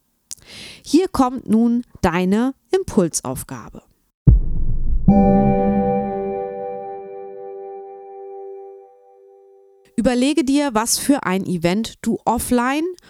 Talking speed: 60 wpm